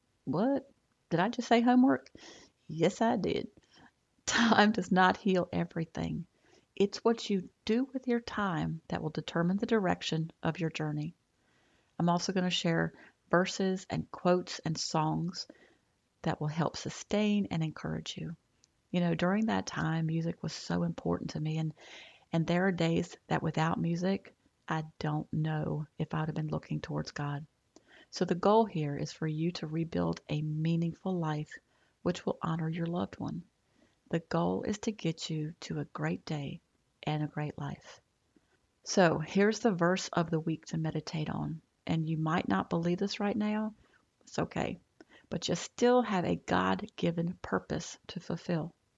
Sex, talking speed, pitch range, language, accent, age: female, 165 wpm, 155-190 Hz, English, American, 40-59